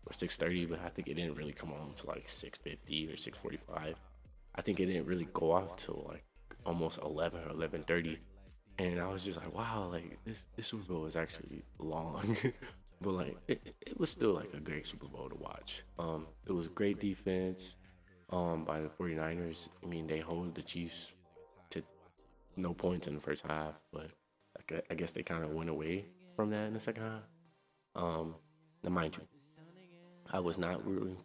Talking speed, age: 190 wpm, 20-39